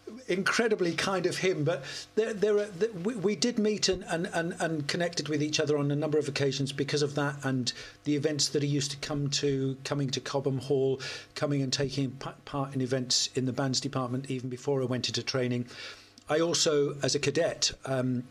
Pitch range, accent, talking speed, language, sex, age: 125-145 Hz, British, 210 wpm, English, male, 40-59